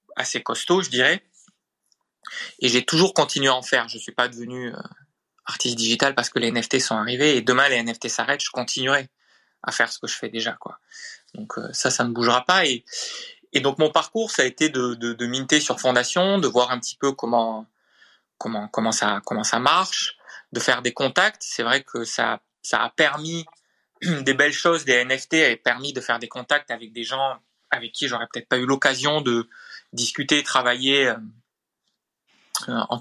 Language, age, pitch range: English, 20-39, 120-155 Hz